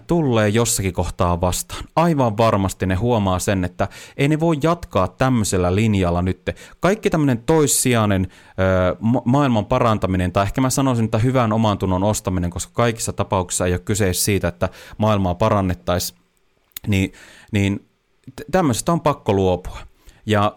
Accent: native